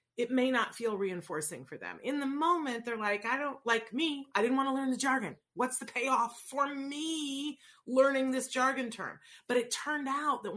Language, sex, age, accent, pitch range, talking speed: English, female, 40-59, American, 190-265 Hz, 210 wpm